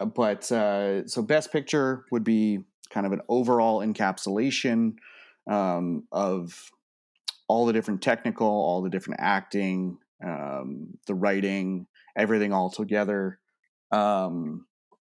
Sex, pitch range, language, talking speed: male, 100-125 Hz, English, 115 wpm